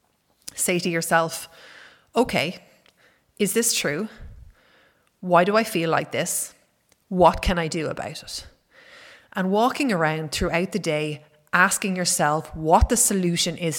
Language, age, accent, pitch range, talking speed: English, 30-49, Irish, 160-185 Hz, 135 wpm